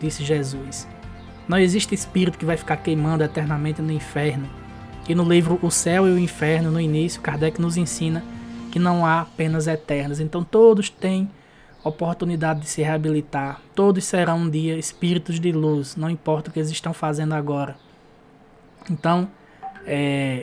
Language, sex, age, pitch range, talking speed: Portuguese, male, 20-39, 150-170 Hz, 160 wpm